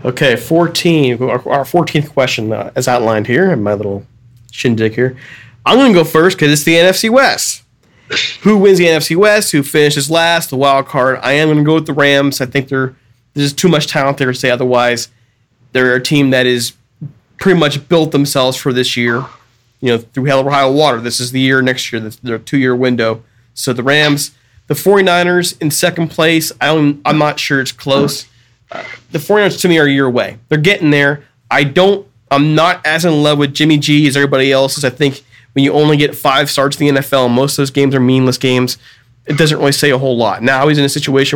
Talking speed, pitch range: 220 wpm, 125-150 Hz